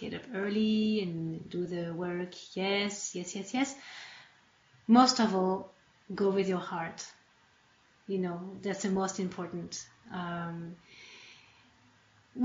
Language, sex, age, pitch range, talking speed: English, female, 30-49, 185-230 Hz, 120 wpm